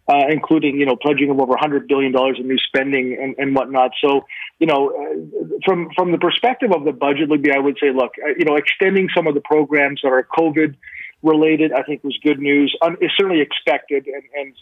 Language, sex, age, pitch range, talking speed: English, male, 40-59, 145-175 Hz, 210 wpm